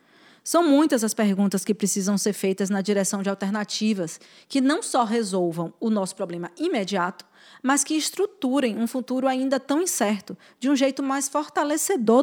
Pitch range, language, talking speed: 195-265 Hz, Portuguese, 160 wpm